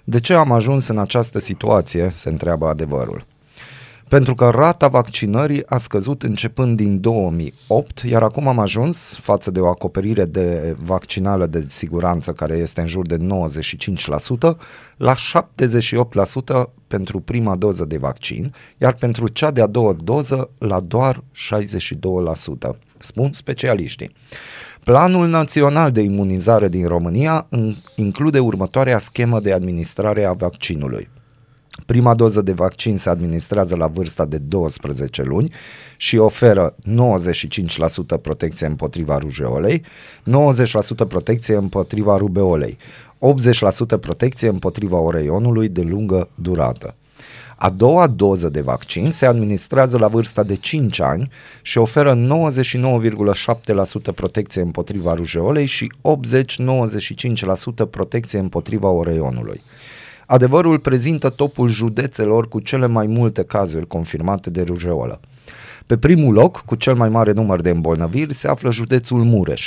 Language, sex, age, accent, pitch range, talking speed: Romanian, male, 30-49, native, 90-125 Hz, 125 wpm